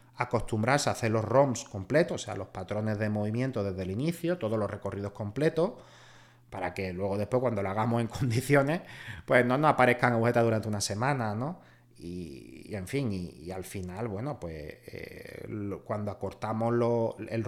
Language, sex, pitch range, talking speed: Spanish, male, 110-130 Hz, 175 wpm